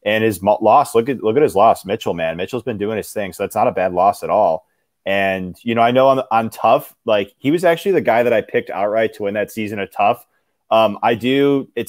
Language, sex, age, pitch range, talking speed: English, male, 20-39, 100-130 Hz, 260 wpm